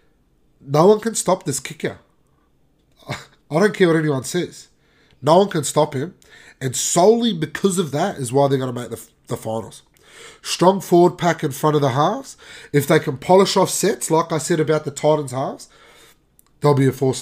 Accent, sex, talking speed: Australian, male, 195 wpm